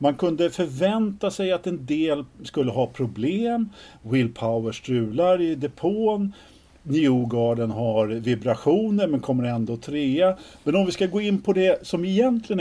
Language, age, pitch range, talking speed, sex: Swedish, 50-69, 115-165 Hz, 150 wpm, male